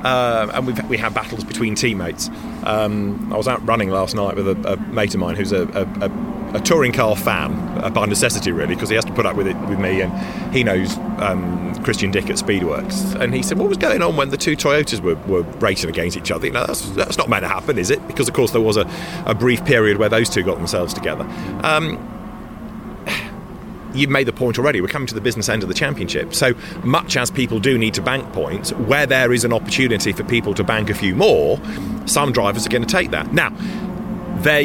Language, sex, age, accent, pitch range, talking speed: English, male, 30-49, British, 105-135 Hz, 240 wpm